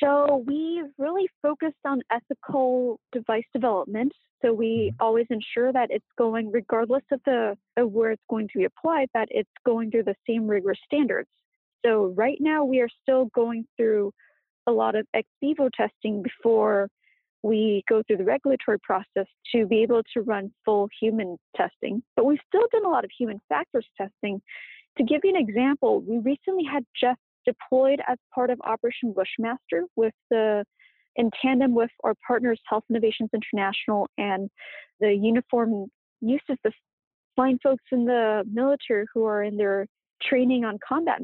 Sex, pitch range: female, 220-270 Hz